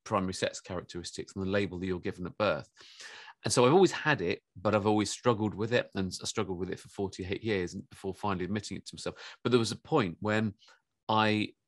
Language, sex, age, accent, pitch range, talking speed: English, male, 40-59, British, 95-110 Hz, 225 wpm